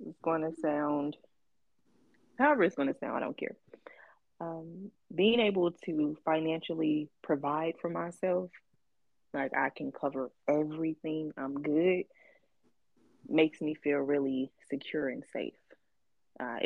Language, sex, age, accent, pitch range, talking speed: English, female, 20-39, American, 145-175 Hz, 125 wpm